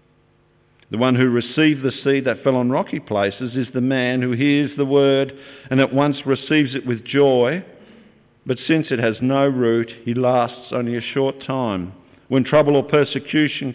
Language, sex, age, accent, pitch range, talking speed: English, male, 50-69, Australian, 110-140 Hz, 180 wpm